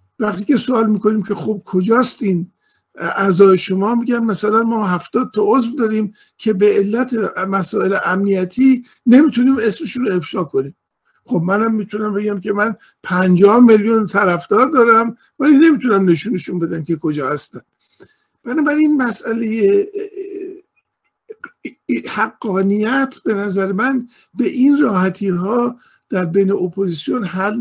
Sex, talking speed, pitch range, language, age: male, 125 wpm, 185-245 Hz, Persian, 50-69